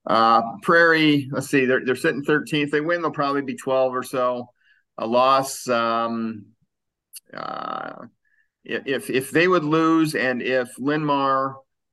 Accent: American